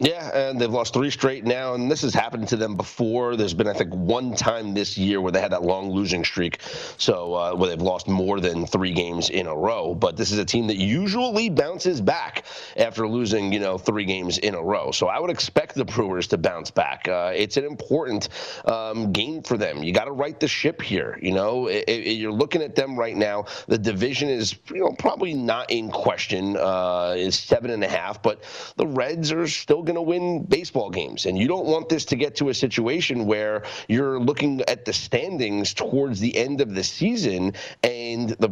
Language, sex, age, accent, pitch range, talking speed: English, male, 30-49, American, 100-140 Hz, 220 wpm